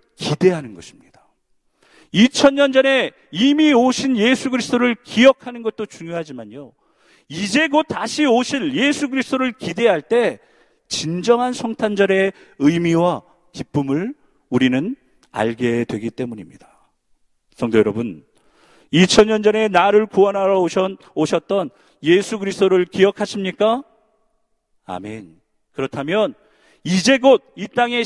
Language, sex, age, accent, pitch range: Korean, male, 40-59, native, 155-245 Hz